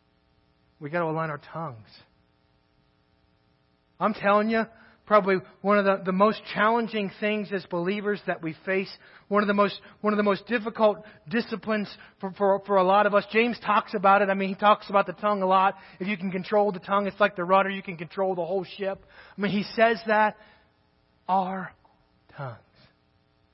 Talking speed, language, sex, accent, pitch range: 190 wpm, English, male, American, 155-210 Hz